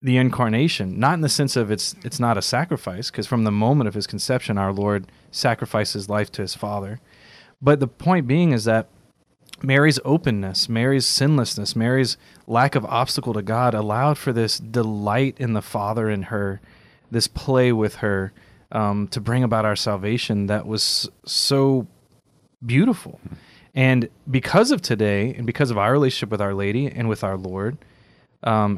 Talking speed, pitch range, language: 170 wpm, 105-135 Hz, English